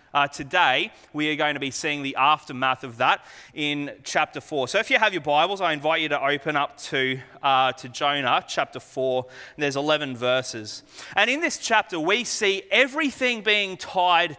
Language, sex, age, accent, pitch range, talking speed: English, male, 30-49, Australian, 140-235 Hz, 190 wpm